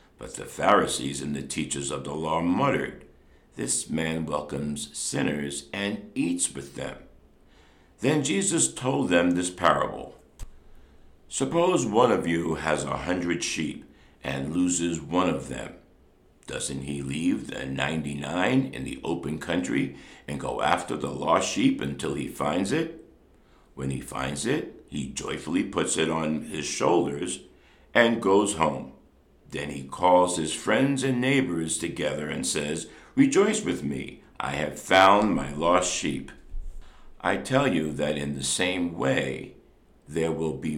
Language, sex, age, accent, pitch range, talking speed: English, male, 60-79, American, 70-90 Hz, 145 wpm